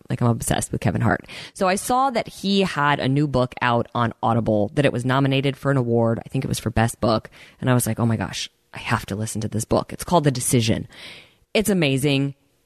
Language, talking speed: English, 245 wpm